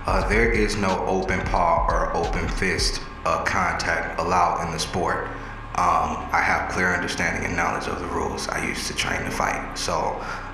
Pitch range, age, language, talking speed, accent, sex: 85-100 Hz, 30-49, English, 190 wpm, American, male